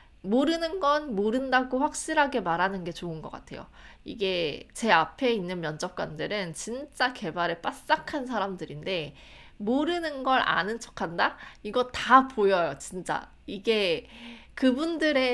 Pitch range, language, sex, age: 175-250 Hz, Korean, female, 20-39